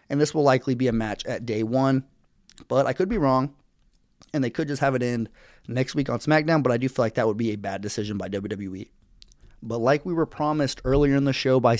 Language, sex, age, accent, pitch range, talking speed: English, male, 30-49, American, 110-140 Hz, 250 wpm